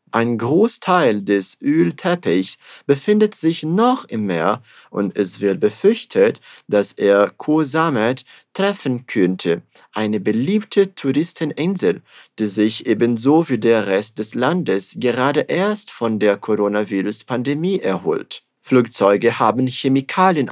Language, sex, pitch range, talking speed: Portuguese, male, 105-165 Hz, 110 wpm